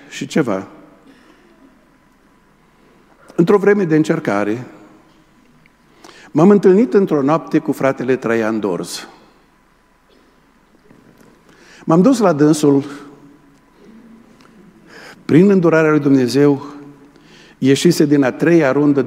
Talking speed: 85 wpm